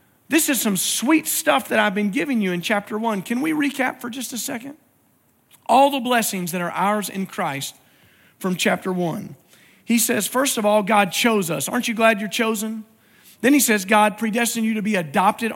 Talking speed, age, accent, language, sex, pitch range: 205 wpm, 40-59, American, English, male, 205-245 Hz